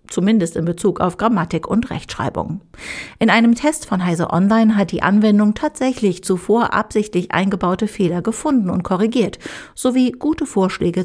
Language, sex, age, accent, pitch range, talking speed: German, female, 50-69, German, 180-235 Hz, 145 wpm